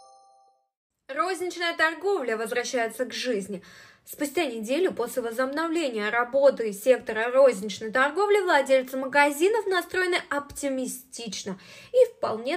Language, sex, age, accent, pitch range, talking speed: Russian, female, 20-39, native, 220-310 Hz, 90 wpm